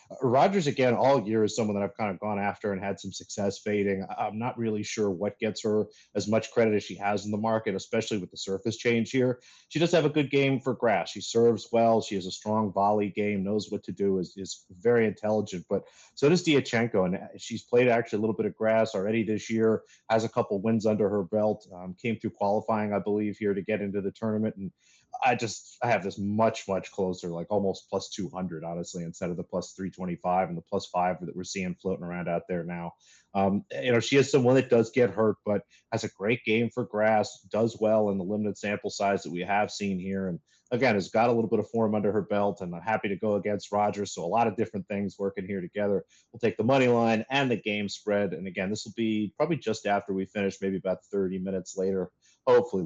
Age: 30-49